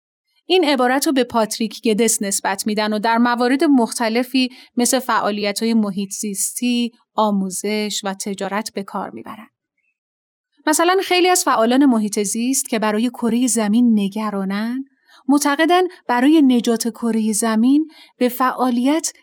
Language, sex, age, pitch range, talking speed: Persian, female, 30-49, 215-285 Hz, 130 wpm